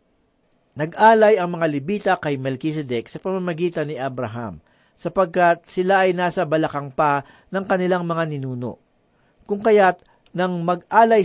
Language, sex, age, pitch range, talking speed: Filipino, male, 40-59, 145-190 Hz, 130 wpm